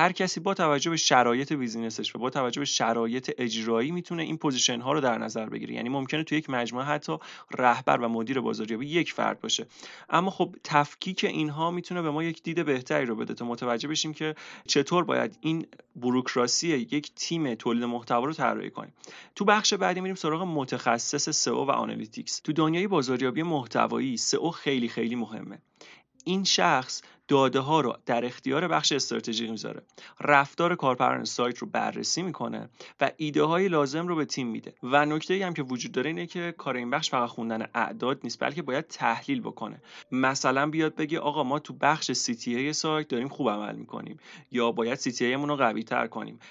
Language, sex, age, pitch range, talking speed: Persian, male, 30-49, 125-160 Hz, 185 wpm